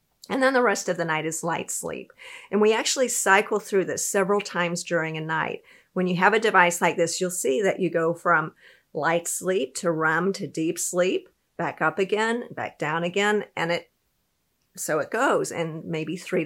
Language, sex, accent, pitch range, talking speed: English, female, American, 165-200 Hz, 200 wpm